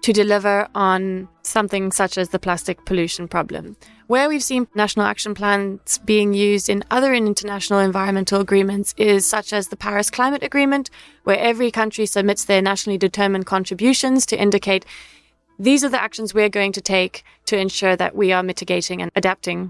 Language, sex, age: English, female, 20-39